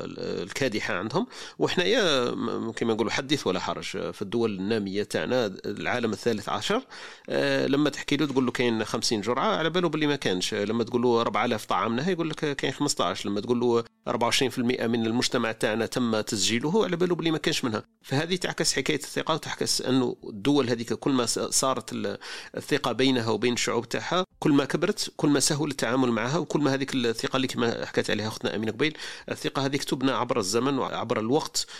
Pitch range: 110-140 Hz